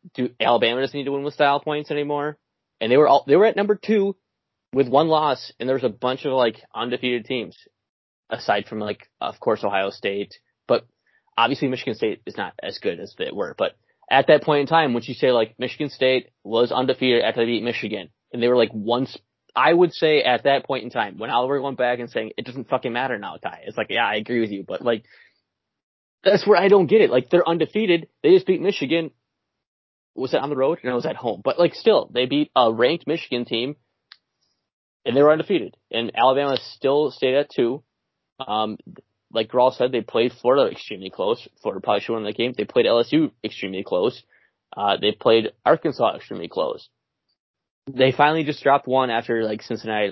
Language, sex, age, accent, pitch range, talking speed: English, male, 20-39, American, 120-160 Hz, 215 wpm